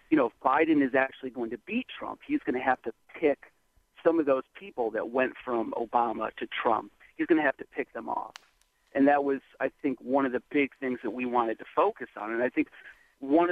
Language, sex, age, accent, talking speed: English, male, 40-59, American, 240 wpm